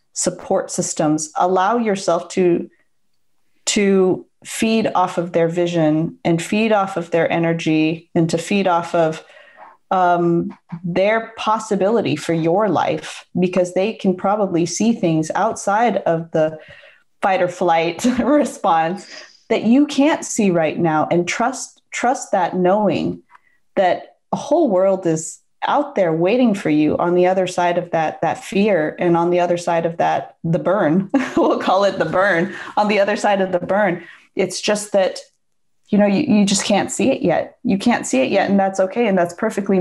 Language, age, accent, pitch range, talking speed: English, 30-49, American, 170-205 Hz, 170 wpm